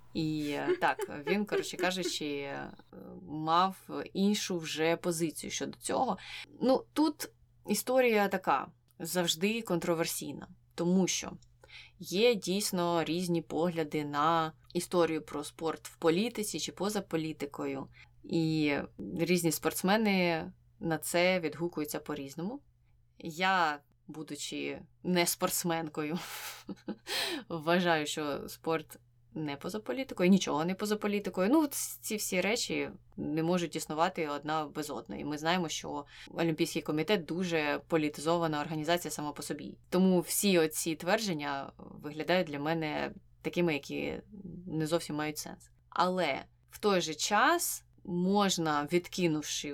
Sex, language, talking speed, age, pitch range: female, Ukrainian, 110 wpm, 20-39, 155-185 Hz